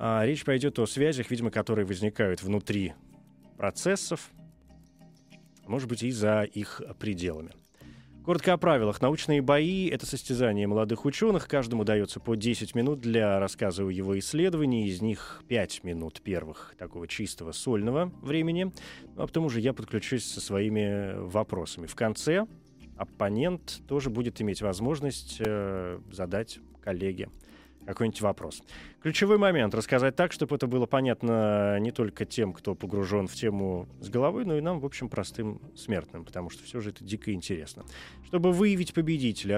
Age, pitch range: 20-39, 100-135 Hz